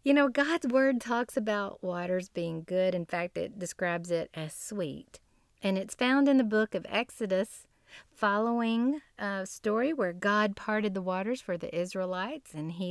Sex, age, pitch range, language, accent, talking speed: female, 40-59, 180-260 Hz, English, American, 170 wpm